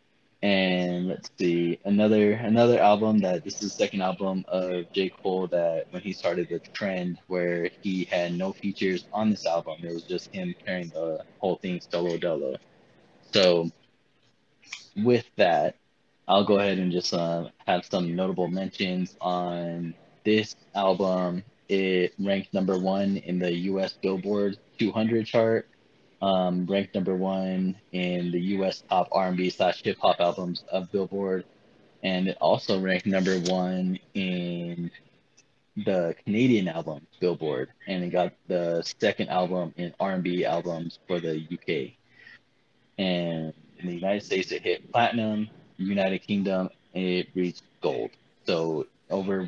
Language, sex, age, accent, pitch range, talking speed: English, male, 20-39, American, 90-100 Hz, 140 wpm